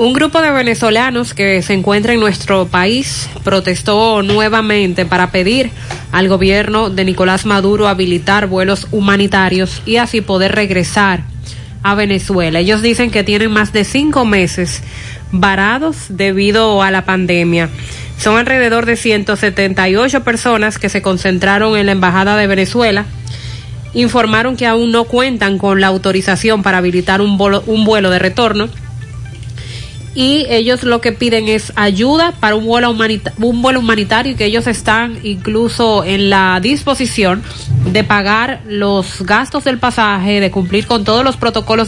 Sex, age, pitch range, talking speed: female, 30-49, 190-225 Hz, 140 wpm